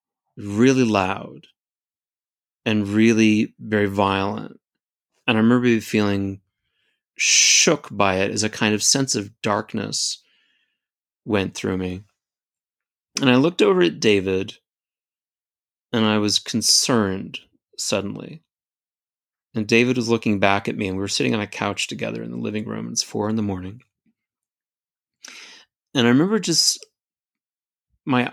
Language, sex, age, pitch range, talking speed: English, male, 30-49, 100-130 Hz, 135 wpm